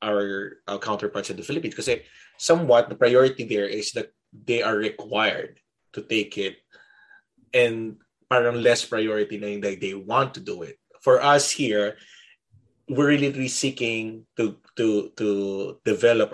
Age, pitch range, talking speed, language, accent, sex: 20-39, 100-125 Hz, 150 wpm, English, Filipino, male